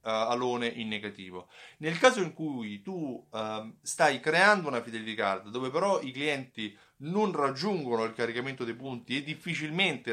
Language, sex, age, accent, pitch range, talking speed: Italian, male, 30-49, native, 115-170 Hz, 150 wpm